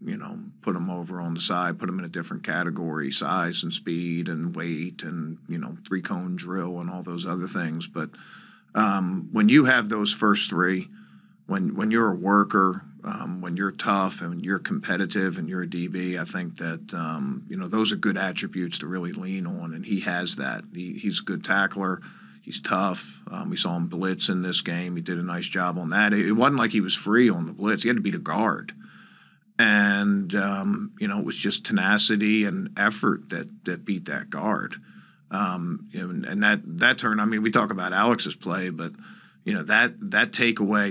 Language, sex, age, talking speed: English, male, 50-69, 210 wpm